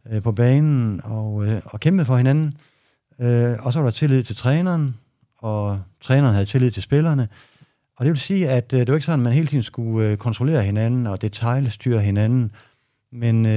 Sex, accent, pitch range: male, native, 110-140 Hz